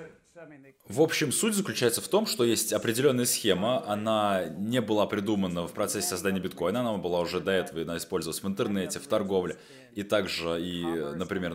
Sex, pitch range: male, 90-110 Hz